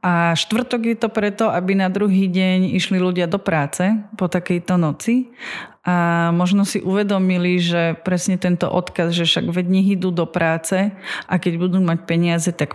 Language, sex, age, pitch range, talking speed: Slovak, female, 30-49, 175-200 Hz, 170 wpm